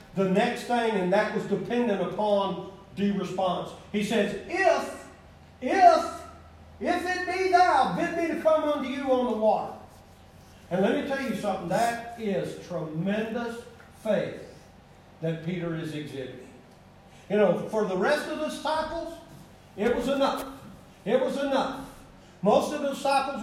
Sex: male